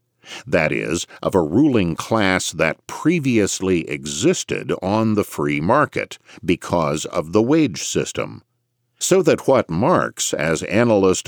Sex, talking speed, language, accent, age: male, 130 wpm, English, American, 50-69